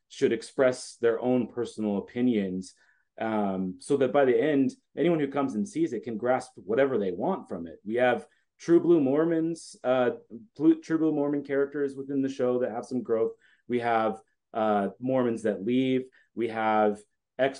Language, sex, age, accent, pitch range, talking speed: English, male, 30-49, American, 110-145 Hz, 175 wpm